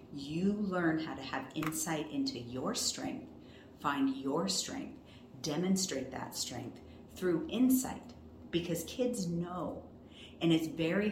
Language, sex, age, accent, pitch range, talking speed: English, female, 40-59, American, 125-190 Hz, 125 wpm